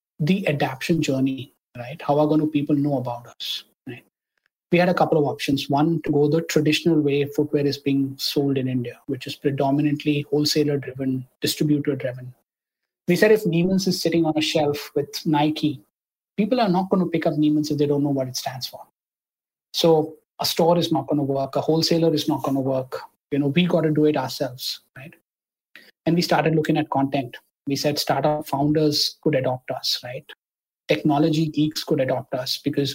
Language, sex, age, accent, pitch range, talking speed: English, male, 30-49, Indian, 140-165 Hz, 200 wpm